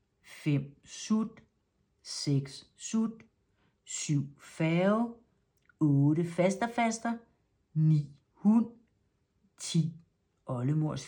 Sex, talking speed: female, 70 wpm